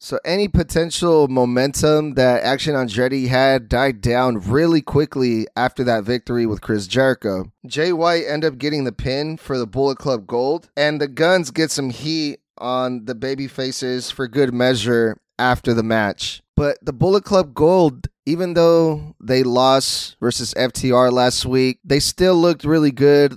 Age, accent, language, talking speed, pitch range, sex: 20-39, American, English, 160 wpm, 125-150 Hz, male